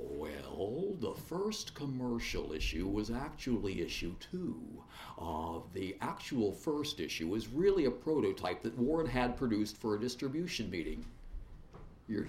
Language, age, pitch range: English, 60-79, 110-140 Hz